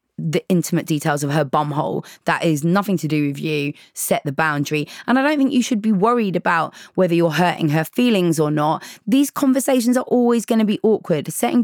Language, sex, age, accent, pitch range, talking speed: English, female, 20-39, British, 155-210 Hz, 215 wpm